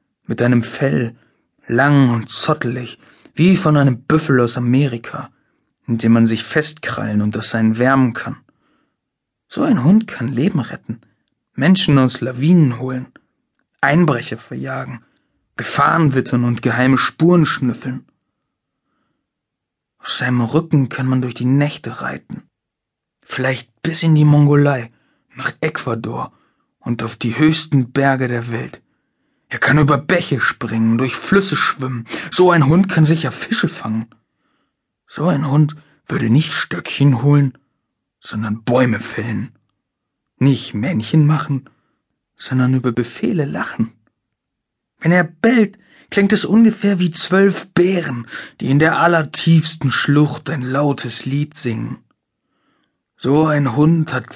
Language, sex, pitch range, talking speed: German, male, 120-155 Hz, 130 wpm